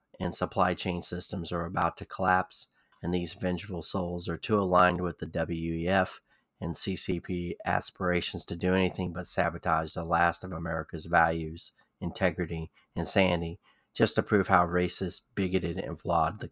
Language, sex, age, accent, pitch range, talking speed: English, male, 30-49, American, 85-95 Hz, 155 wpm